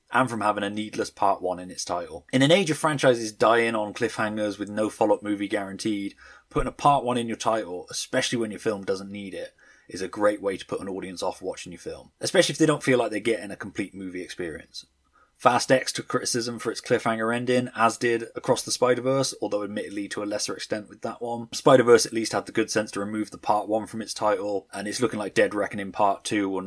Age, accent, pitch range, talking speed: 20-39, British, 95-115 Hz, 240 wpm